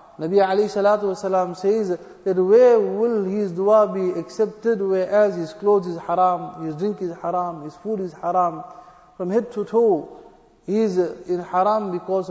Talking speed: 155 wpm